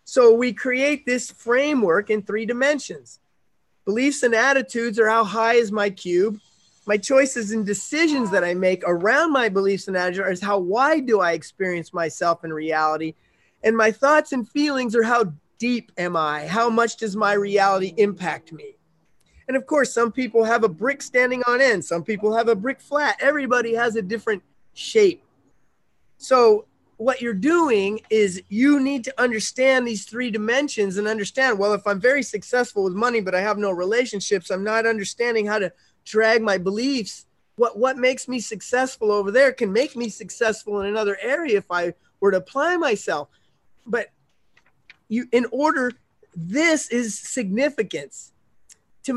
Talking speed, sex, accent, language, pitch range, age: 170 wpm, male, American, English, 205-260 Hz, 30-49